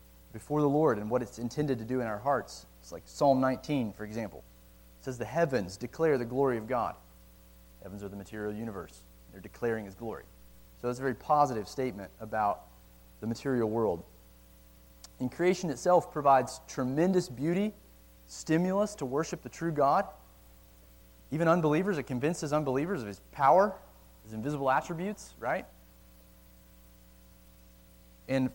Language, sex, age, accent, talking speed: English, male, 30-49, American, 150 wpm